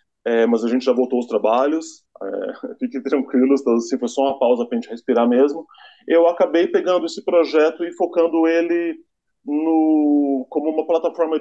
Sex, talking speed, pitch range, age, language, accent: male, 175 wpm, 135-215 Hz, 20-39, Portuguese, Brazilian